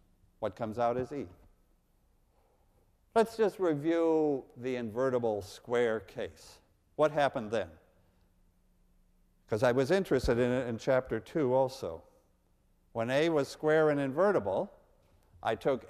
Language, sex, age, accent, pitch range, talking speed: English, male, 50-69, American, 120-165 Hz, 125 wpm